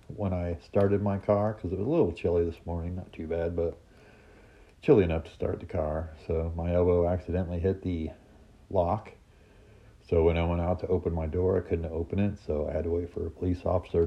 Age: 40-59